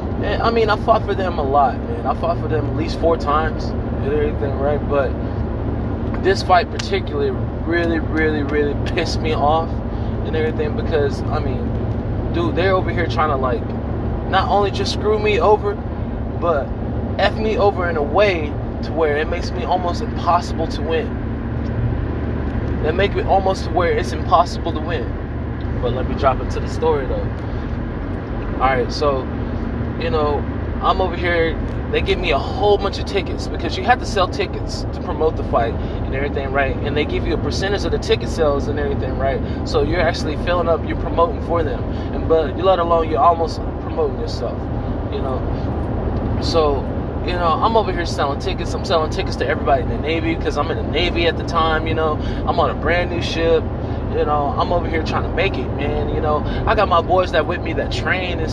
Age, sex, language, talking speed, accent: 20-39, male, English, 205 wpm, American